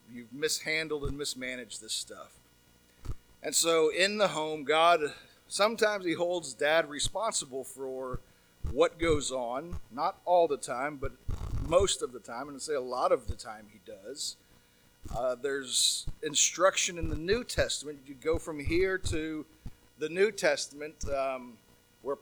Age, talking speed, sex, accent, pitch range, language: 40-59, 155 wpm, male, American, 125-160 Hz, English